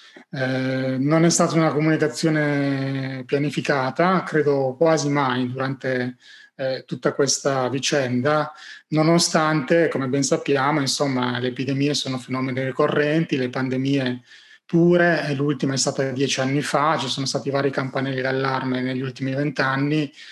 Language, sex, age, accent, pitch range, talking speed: Italian, male, 30-49, native, 130-150 Hz, 125 wpm